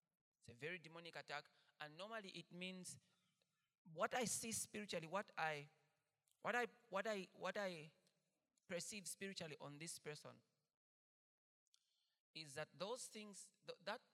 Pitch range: 155-200 Hz